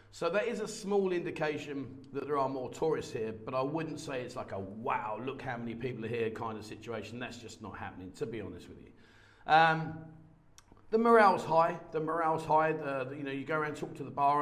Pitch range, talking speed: 130-170 Hz, 235 wpm